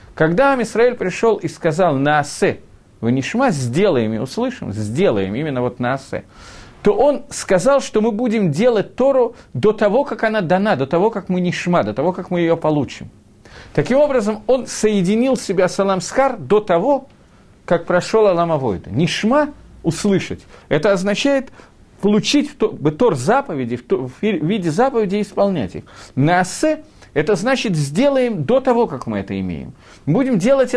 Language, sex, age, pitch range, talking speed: Russian, male, 40-59, 145-230 Hz, 150 wpm